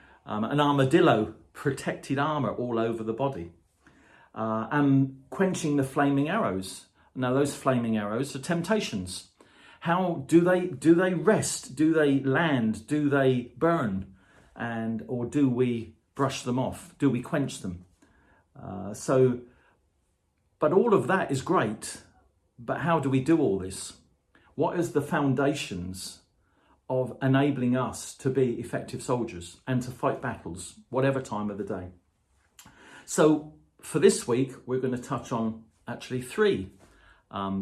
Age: 40-59